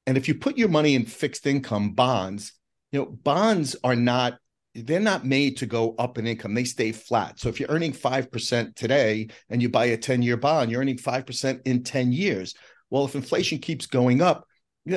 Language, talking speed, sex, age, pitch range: English, 210 wpm, male, 40-59, 110-135 Hz